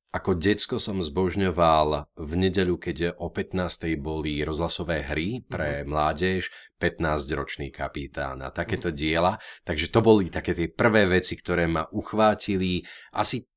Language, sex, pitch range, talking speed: Slovak, male, 80-95 Hz, 135 wpm